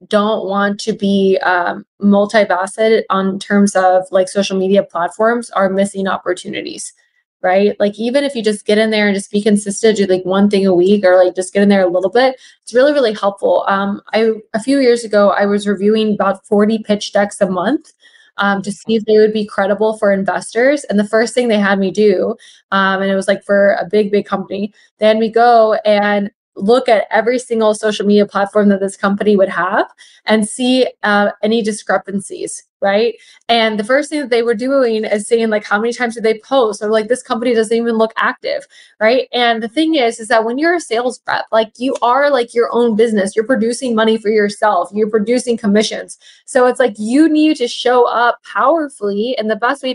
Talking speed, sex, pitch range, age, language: 215 wpm, female, 200-240 Hz, 20-39, English